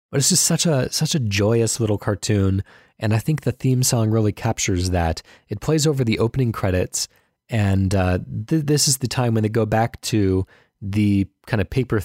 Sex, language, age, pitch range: male, English, 20-39, 95-120 Hz